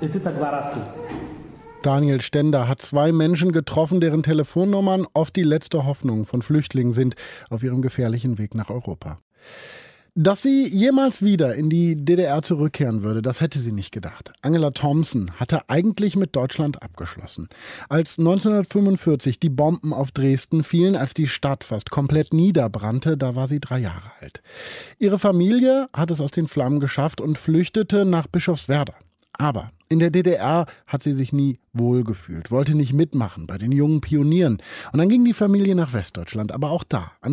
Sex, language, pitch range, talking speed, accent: male, German, 120-175 Hz, 160 wpm, German